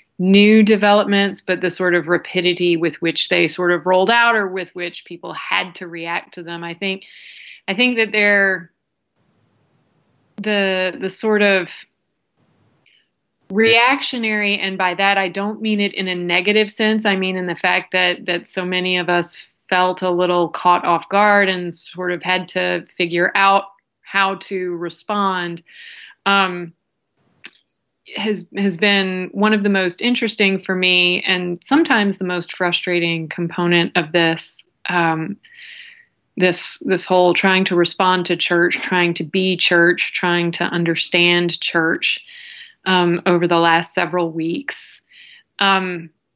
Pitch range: 175-200 Hz